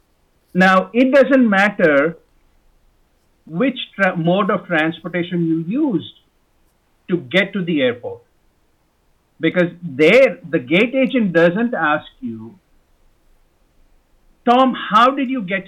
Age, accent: 50-69, Indian